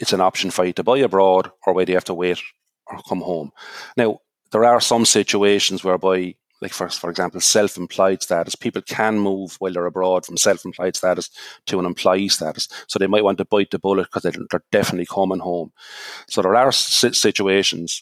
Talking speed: 205 wpm